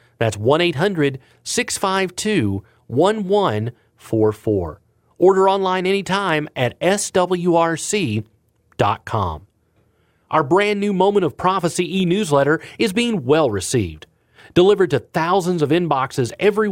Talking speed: 90 wpm